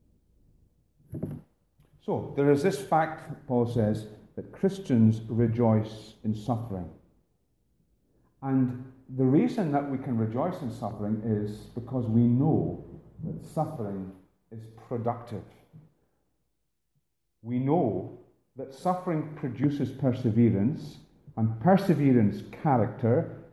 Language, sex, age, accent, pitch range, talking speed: English, male, 40-59, British, 115-150 Hz, 95 wpm